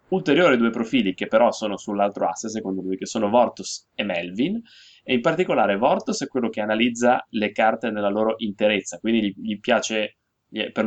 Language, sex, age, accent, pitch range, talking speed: Italian, male, 20-39, native, 100-120 Hz, 175 wpm